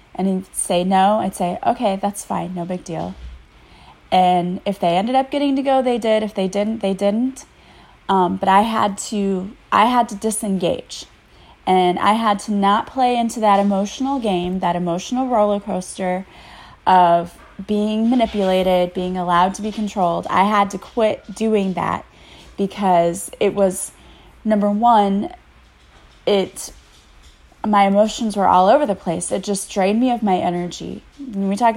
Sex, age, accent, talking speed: female, 20-39, American, 165 wpm